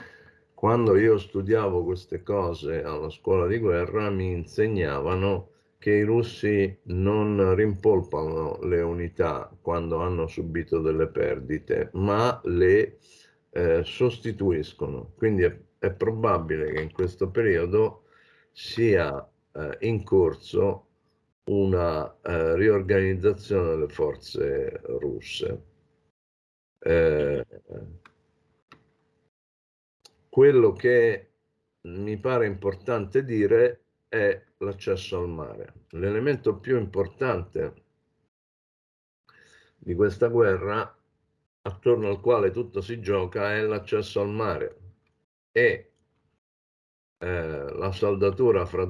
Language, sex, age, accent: Italian, male, 50-69, native